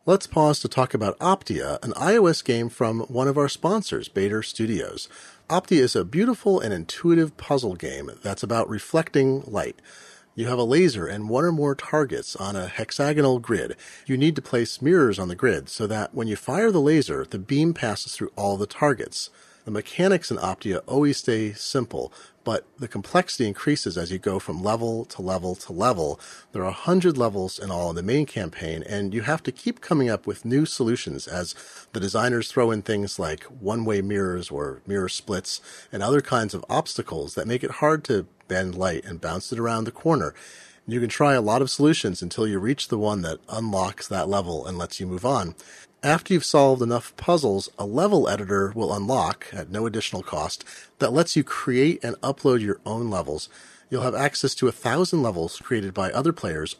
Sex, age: male, 40-59